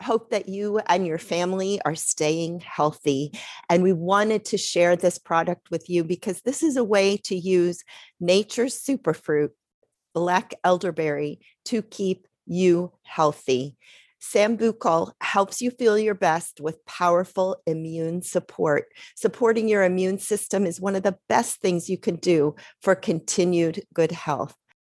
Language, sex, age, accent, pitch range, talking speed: English, female, 40-59, American, 160-200 Hz, 145 wpm